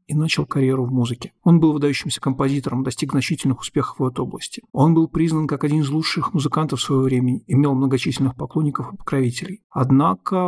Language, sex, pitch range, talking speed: Russian, male, 130-155 Hz, 180 wpm